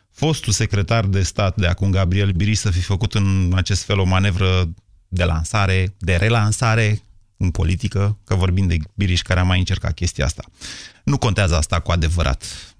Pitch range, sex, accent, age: 95-135 Hz, male, native, 30-49